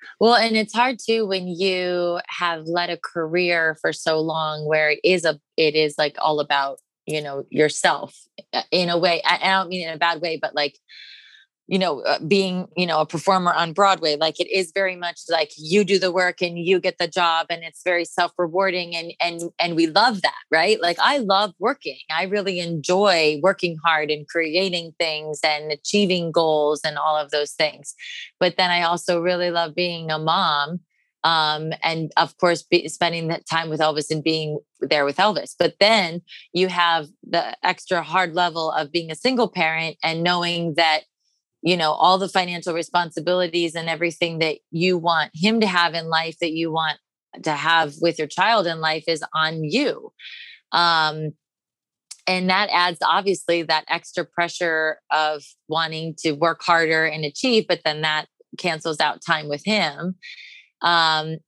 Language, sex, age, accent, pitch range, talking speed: English, female, 20-39, American, 160-185 Hz, 185 wpm